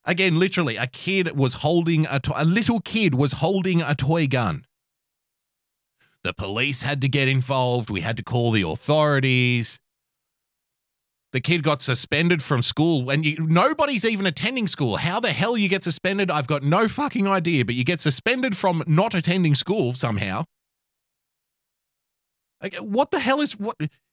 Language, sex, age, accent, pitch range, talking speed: English, male, 30-49, Australian, 130-175 Hz, 165 wpm